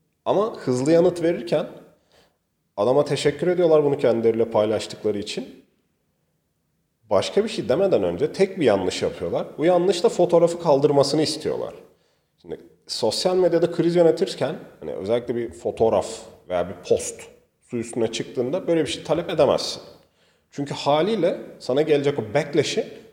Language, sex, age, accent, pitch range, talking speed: Turkish, male, 40-59, native, 120-175 Hz, 135 wpm